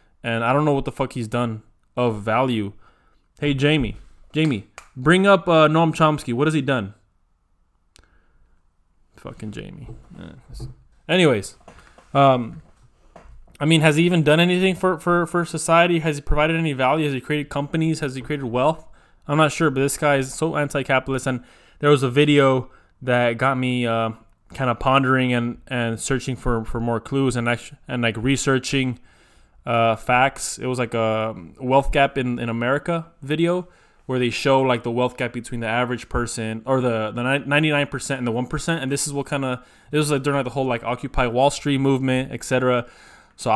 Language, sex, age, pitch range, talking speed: English, male, 20-39, 120-145 Hz, 185 wpm